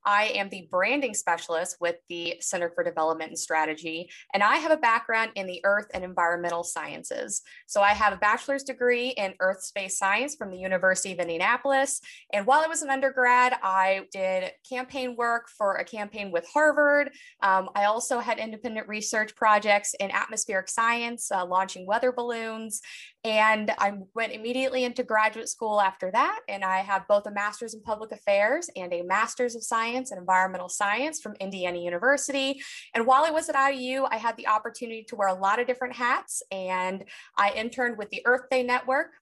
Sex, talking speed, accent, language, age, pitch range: female, 185 wpm, American, English, 20-39, 190-245 Hz